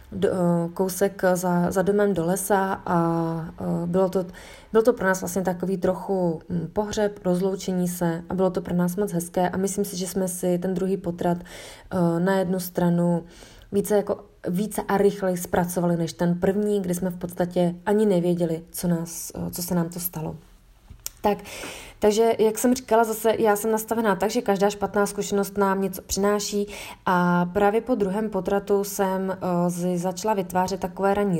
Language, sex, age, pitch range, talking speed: Slovak, female, 20-39, 175-200 Hz, 170 wpm